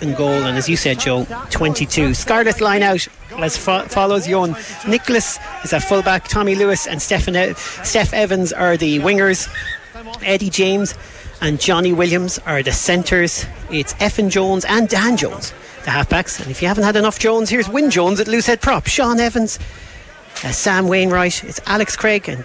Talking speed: 180 wpm